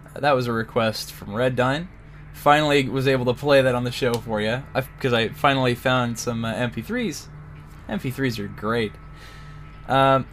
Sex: male